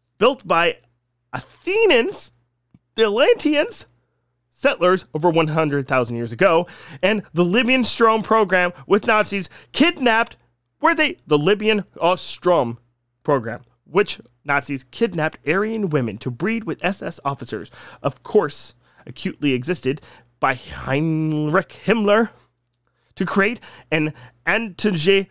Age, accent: 30-49, American